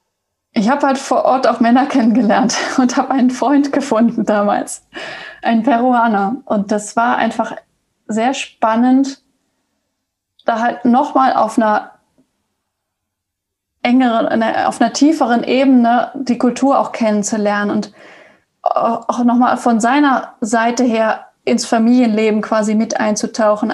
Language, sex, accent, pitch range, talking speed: German, female, German, 225-280 Hz, 120 wpm